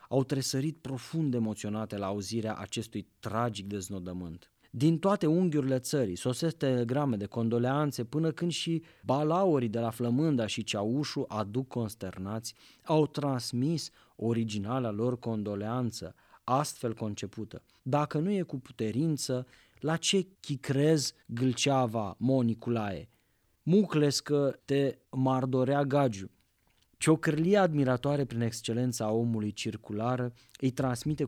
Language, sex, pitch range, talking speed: English, male, 115-140 Hz, 110 wpm